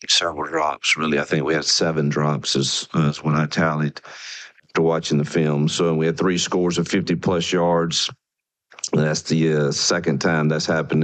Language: English